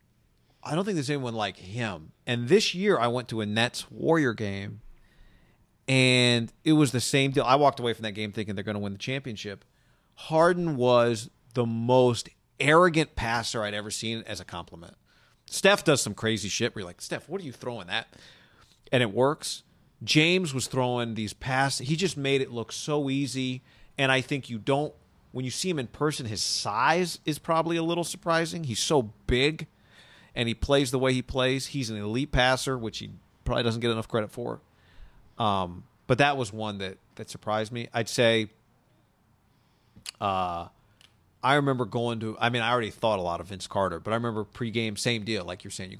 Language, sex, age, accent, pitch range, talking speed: English, male, 40-59, American, 105-135 Hz, 200 wpm